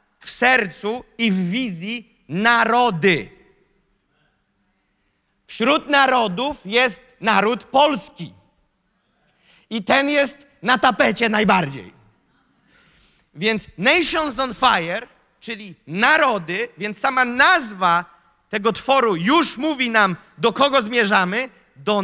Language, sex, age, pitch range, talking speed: Polish, male, 30-49, 200-265 Hz, 95 wpm